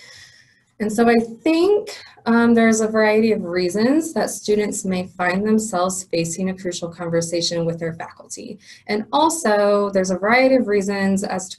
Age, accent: 20-39, American